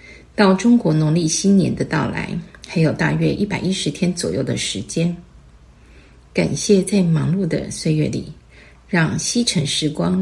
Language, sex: Chinese, female